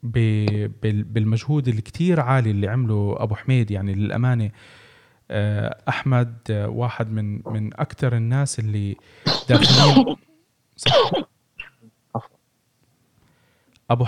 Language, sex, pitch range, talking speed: Arabic, male, 110-145 Hz, 80 wpm